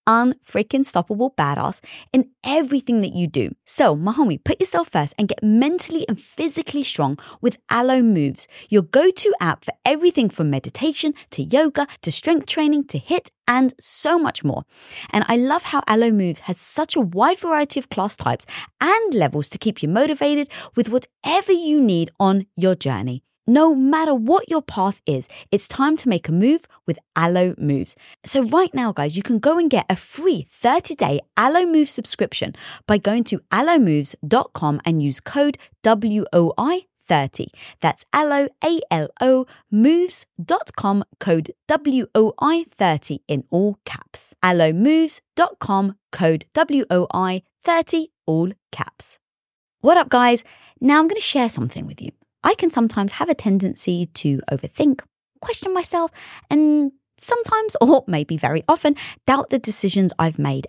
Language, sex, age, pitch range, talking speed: English, female, 20-39, 185-305 Hz, 150 wpm